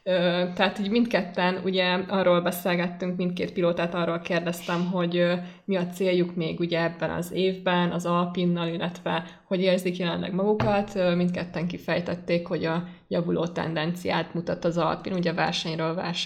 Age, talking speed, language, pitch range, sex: 20-39, 135 wpm, English, 170-185 Hz, female